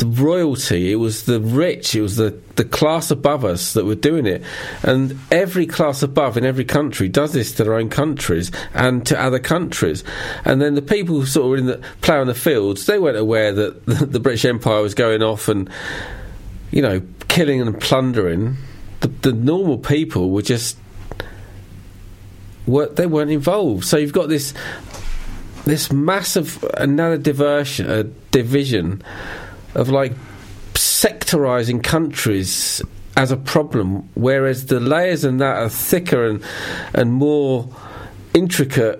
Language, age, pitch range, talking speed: English, 40-59, 105-145 Hz, 155 wpm